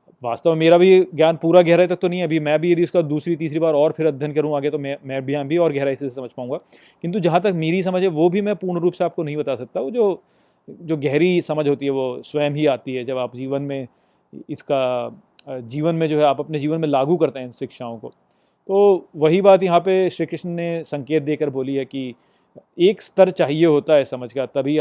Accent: native